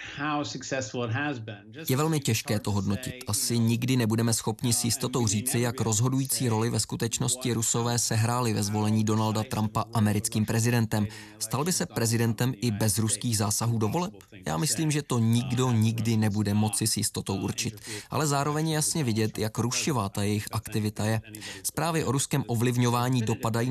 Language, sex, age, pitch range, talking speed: Czech, male, 20-39, 110-130 Hz, 155 wpm